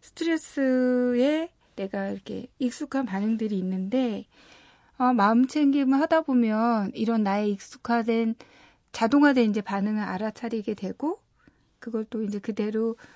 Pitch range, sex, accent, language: 205-260 Hz, female, native, Korean